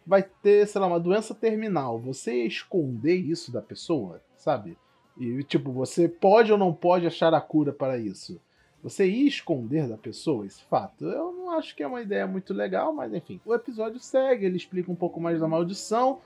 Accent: Brazilian